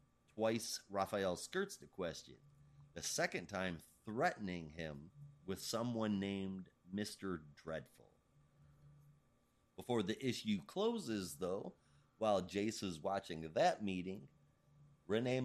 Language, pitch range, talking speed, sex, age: English, 90-125 Hz, 105 wpm, male, 30-49